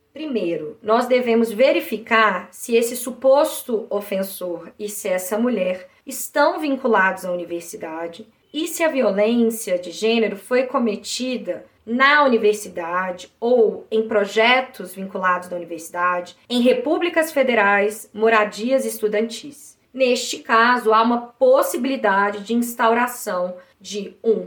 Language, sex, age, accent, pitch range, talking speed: Portuguese, female, 20-39, Brazilian, 200-250 Hz, 115 wpm